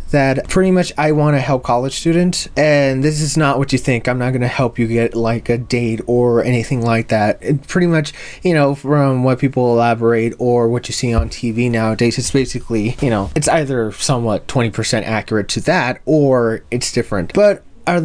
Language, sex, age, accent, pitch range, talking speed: English, male, 20-39, American, 115-140 Hz, 200 wpm